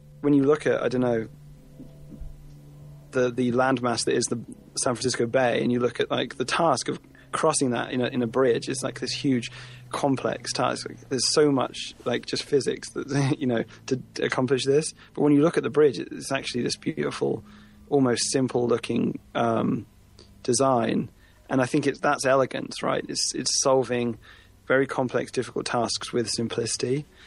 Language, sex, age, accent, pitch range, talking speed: English, male, 30-49, British, 115-135 Hz, 180 wpm